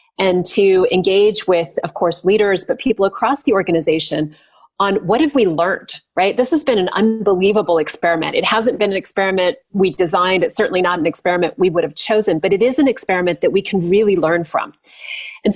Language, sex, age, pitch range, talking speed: English, female, 30-49, 180-225 Hz, 200 wpm